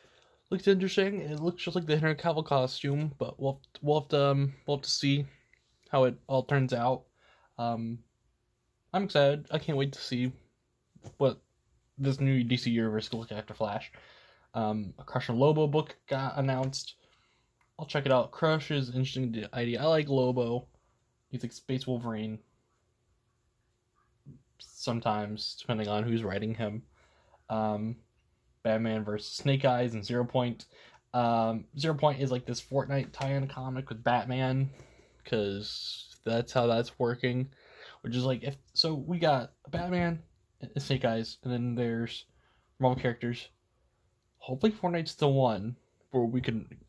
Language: English